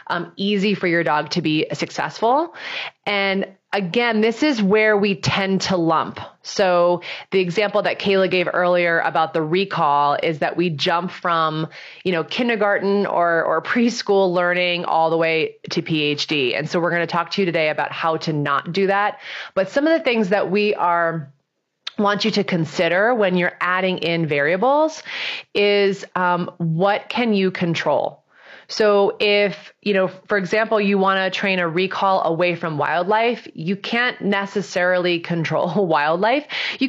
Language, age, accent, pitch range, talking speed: English, 30-49, American, 165-205 Hz, 170 wpm